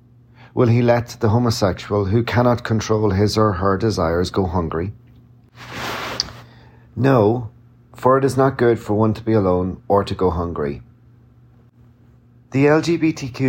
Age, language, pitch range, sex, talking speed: 40-59, English, 100-120 Hz, male, 140 wpm